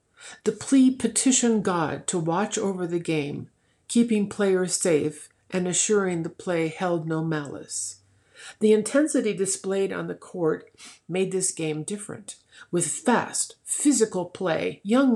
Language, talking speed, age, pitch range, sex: English, 135 wpm, 50-69, 175-225 Hz, female